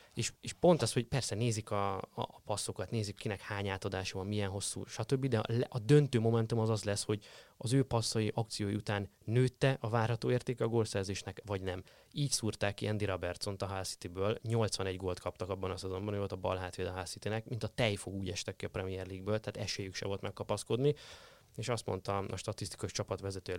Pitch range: 100-120 Hz